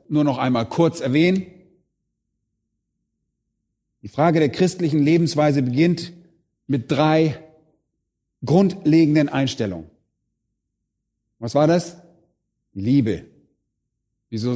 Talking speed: 80 wpm